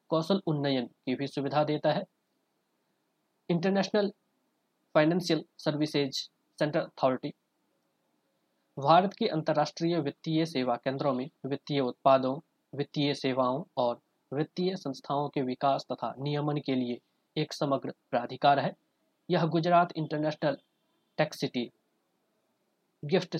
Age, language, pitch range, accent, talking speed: 20-39, Hindi, 135-165 Hz, native, 110 wpm